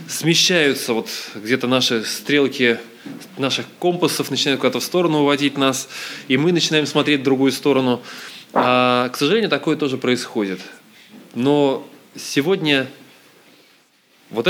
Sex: male